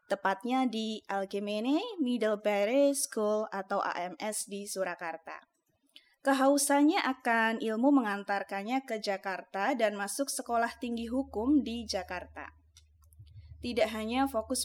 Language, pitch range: Indonesian, 200-270 Hz